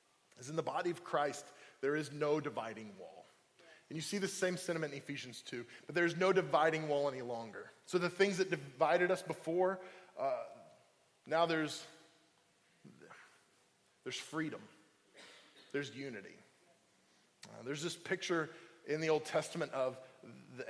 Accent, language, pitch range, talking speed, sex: American, English, 140-170 Hz, 150 wpm, male